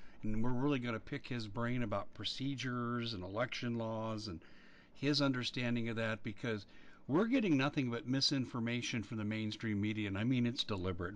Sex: male